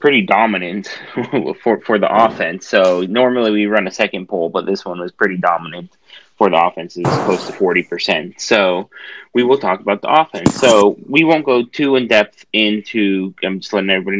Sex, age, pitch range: male, 20-39, 95-125 Hz